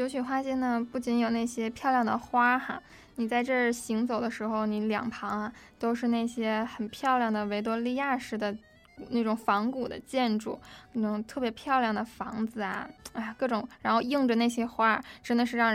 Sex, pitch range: female, 225-260 Hz